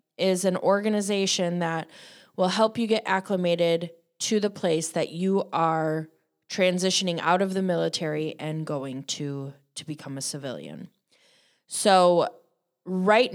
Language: English